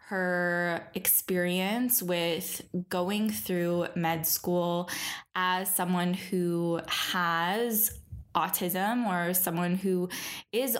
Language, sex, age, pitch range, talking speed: English, female, 10-29, 175-200 Hz, 90 wpm